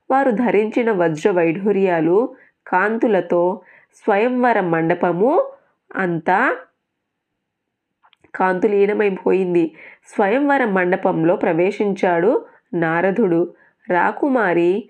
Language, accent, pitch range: Telugu, native, 175-230 Hz